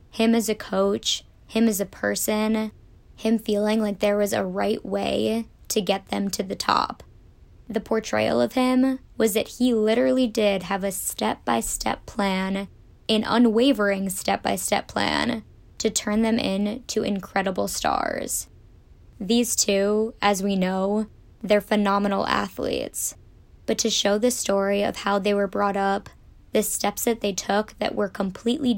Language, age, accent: English, 20-39, American